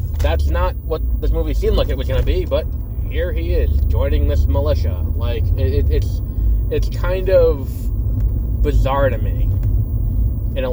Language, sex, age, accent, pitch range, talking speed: English, male, 20-39, American, 85-110 Hz, 175 wpm